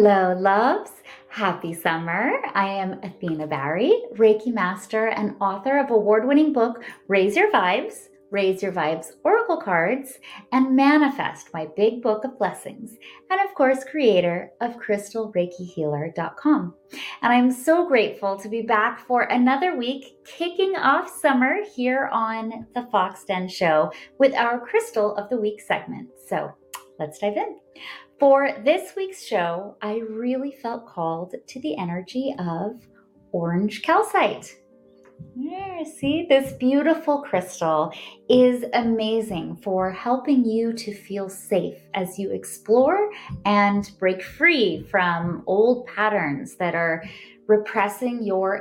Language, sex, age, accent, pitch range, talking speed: English, female, 30-49, American, 185-250 Hz, 130 wpm